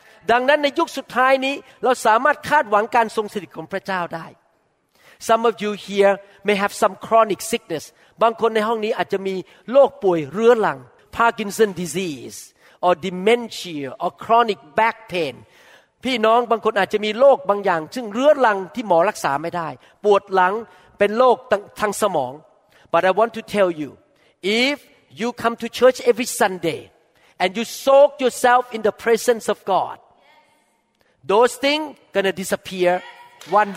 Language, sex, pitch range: Thai, male, 190-260 Hz